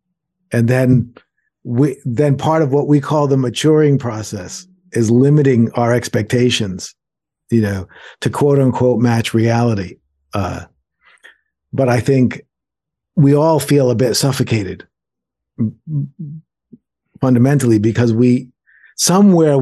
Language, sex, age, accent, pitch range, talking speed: English, male, 50-69, American, 115-140 Hz, 115 wpm